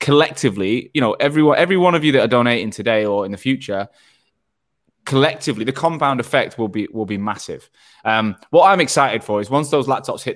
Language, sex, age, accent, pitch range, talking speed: English, male, 20-39, British, 105-135 Hz, 205 wpm